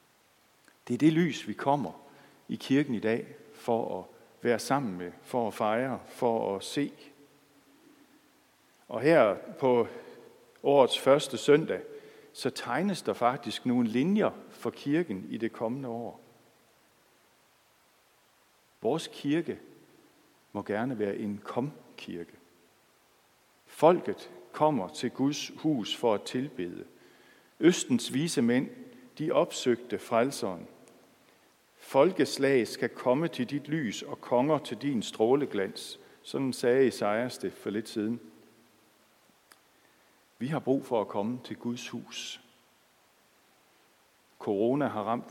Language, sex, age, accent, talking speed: Danish, male, 60-79, native, 120 wpm